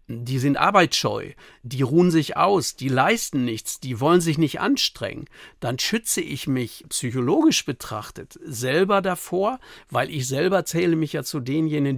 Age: 60-79